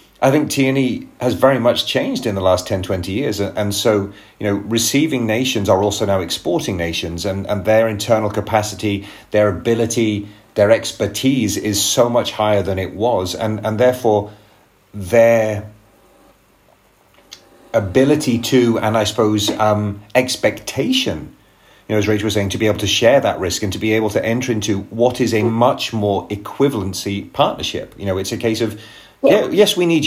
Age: 30-49